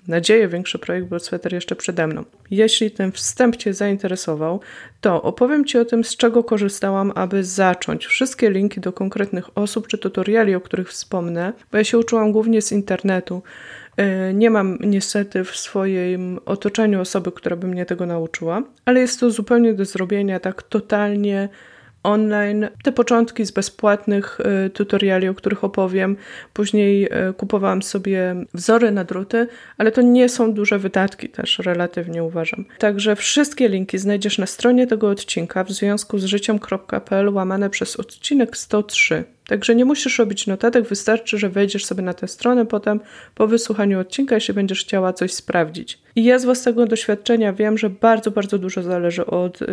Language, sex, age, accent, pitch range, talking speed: Polish, female, 20-39, native, 190-225 Hz, 165 wpm